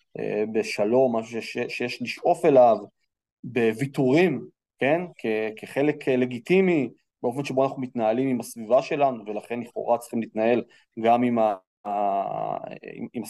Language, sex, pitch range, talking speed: English, male, 115-155 Hz, 65 wpm